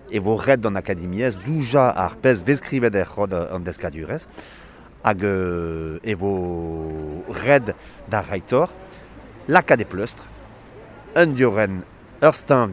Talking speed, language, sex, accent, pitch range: 90 wpm, French, male, French, 95-140 Hz